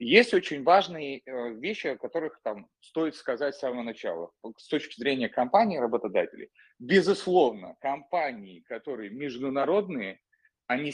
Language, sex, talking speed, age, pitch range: Russian, male, 120 wpm, 30-49, 130-180 Hz